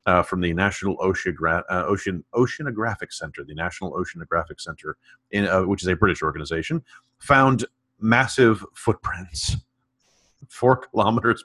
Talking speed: 130 wpm